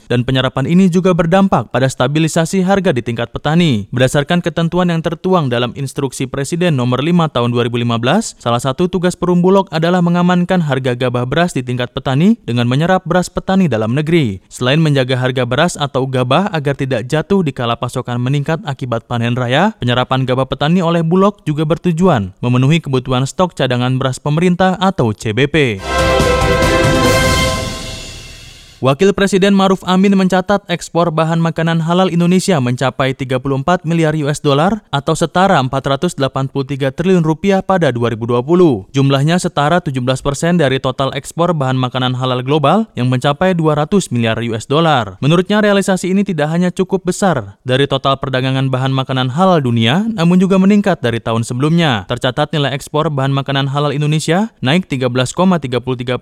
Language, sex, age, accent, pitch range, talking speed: Indonesian, male, 20-39, native, 130-180 Hz, 150 wpm